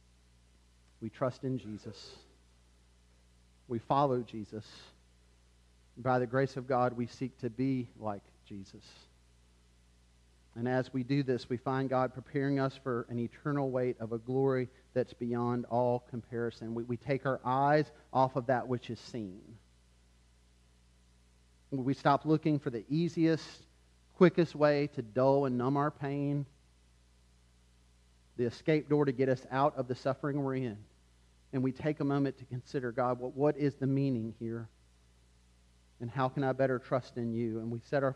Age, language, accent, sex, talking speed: 40-59, English, American, male, 160 wpm